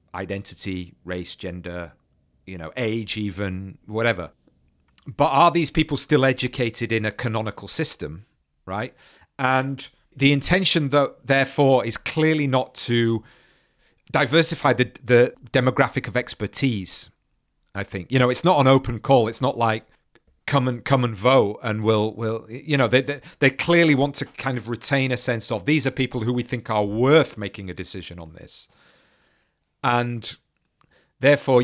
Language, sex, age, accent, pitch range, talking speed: English, male, 40-59, British, 105-135 Hz, 155 wpm